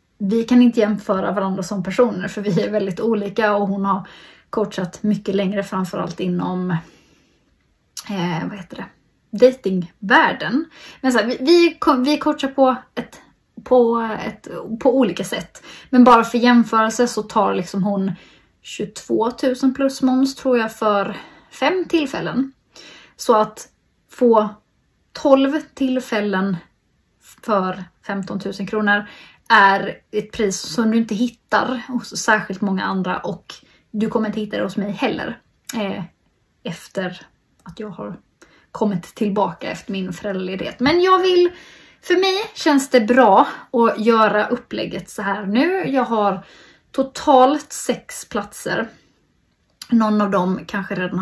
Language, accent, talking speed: Swedish, native, 135 wpm